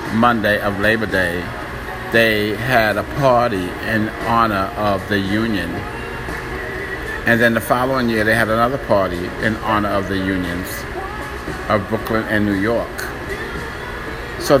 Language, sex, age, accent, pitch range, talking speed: English, male, 50-69, American, 95-115 Hz, 135 wpm